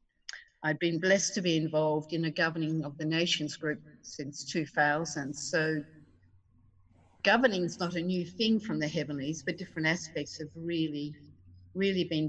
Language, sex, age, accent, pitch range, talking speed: English, female, 50-69, Australian, 155-190 Hz, 155 wpm